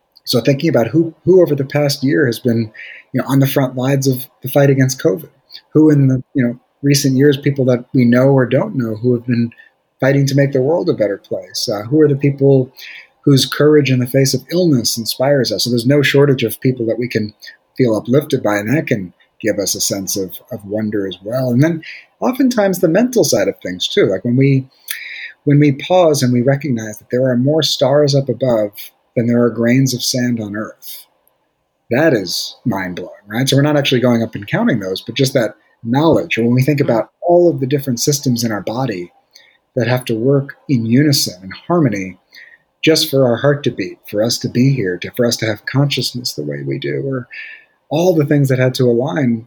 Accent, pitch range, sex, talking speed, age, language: American, 120-140 Hz, male, 225 wpm, 30-49, English